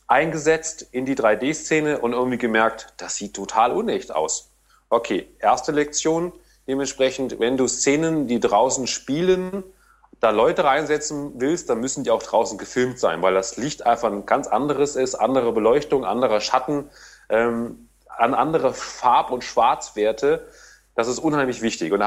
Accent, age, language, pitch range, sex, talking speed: German, 30-49, German, 125-175 Hz, male, 150 wpm